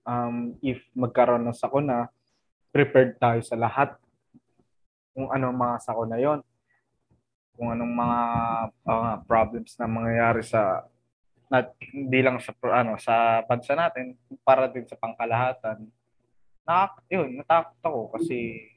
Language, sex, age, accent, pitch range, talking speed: Filipino, male, 20-39, native, 115-160 Hz, 120 wpm